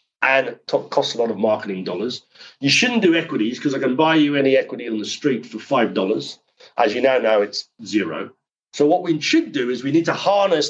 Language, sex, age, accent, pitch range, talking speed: English, male, 40-59, British, 115-170 Hz, 230 wpm